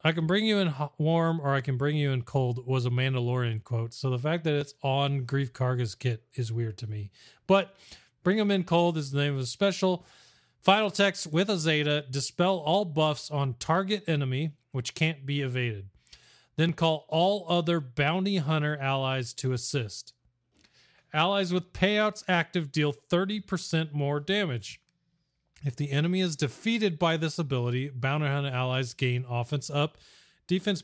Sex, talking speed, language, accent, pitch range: male, 170 wpm, English, American, 130-170 Hz